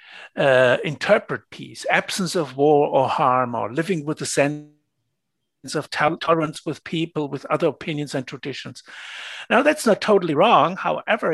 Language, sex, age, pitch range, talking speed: English, male, 60-79, 150-205 Hz, 150 wpm